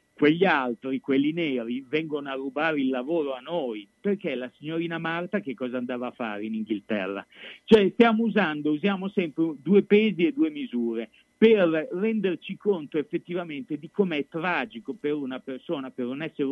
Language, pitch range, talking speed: Italian, 135-180 Hz, 165 wpm